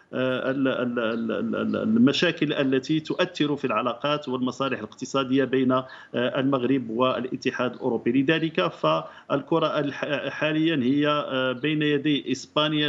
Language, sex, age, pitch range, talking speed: English, male, 50-69, 130-155 Hz, 85 wpm